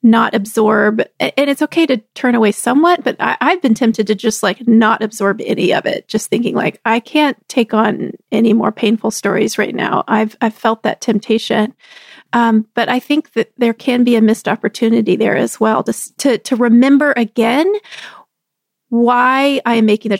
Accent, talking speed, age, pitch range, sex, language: American, 185 wpm, 30-49, 215-255 Hz, female, English